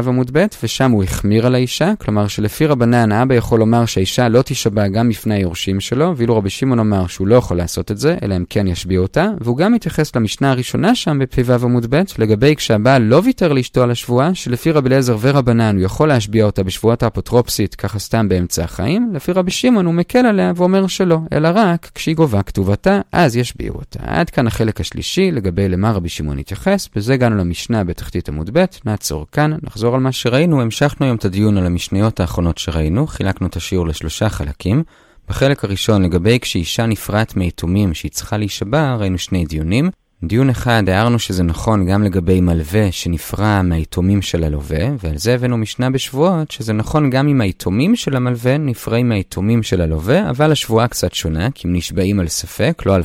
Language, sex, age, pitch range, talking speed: Hebrew, male, 30-49, 95-140 Hz, 165 wpm